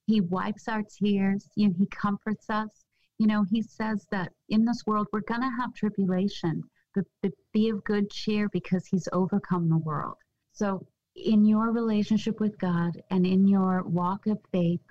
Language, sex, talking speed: English, female, 175 wpm